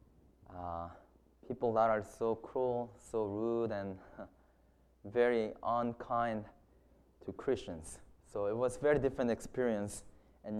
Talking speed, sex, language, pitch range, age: 120 wpm, male, English, 115-175 Hz, 20-39